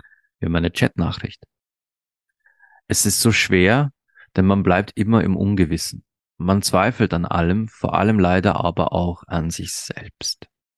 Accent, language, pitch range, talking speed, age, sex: German, German, 85-110 Hz, 140 wpm, 40-59, male